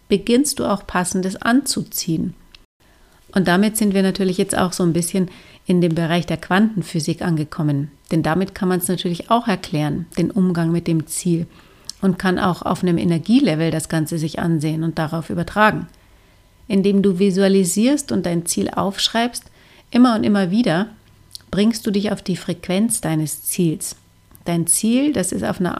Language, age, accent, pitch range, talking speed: German, 40-59, German, 170-205 Hz, 165 wpm